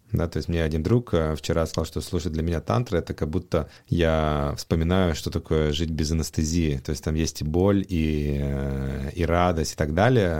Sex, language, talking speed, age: male, Russian, 200 wpm, 30-49